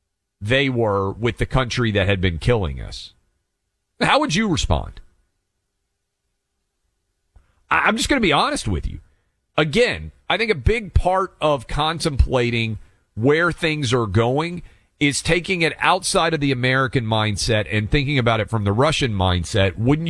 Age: 40-59